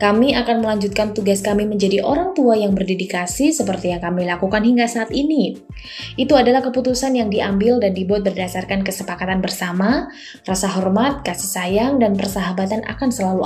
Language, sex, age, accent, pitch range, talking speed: Indonesian, female, 20-39, native, 195-260 Hz, 155 wpm